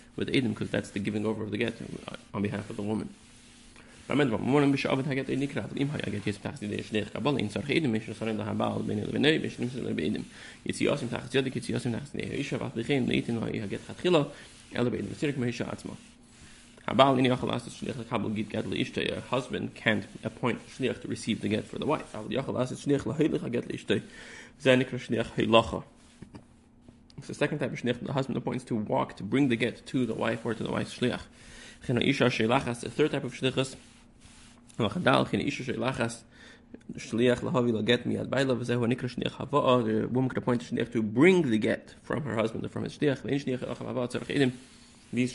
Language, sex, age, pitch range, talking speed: English, male, 30-49, 110-130 Hz, 95 wpm